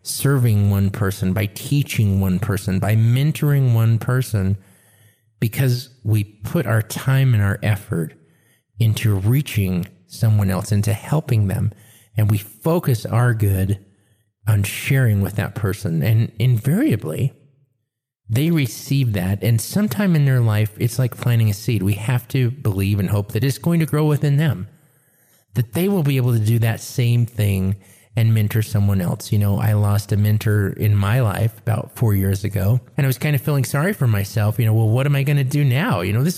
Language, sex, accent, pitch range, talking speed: English, male, American, 100-130 Hz, 185 wpm